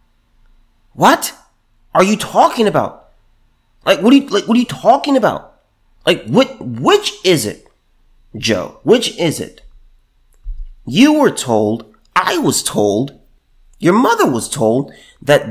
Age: 30-49